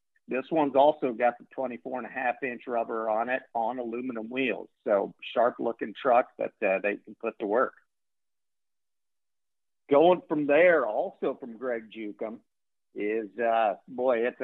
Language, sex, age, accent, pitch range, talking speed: English, male, 50-69, American, 110-135 Hz, 135 wpm